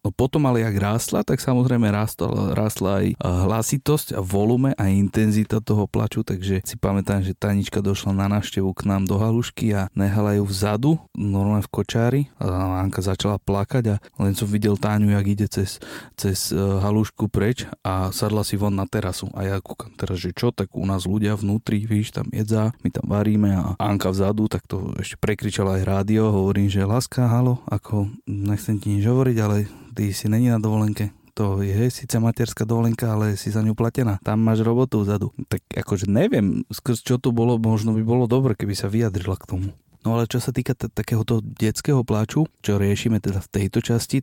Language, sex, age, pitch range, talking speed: Slovak, male, 30-49, 100-115 Hz, 190 wpm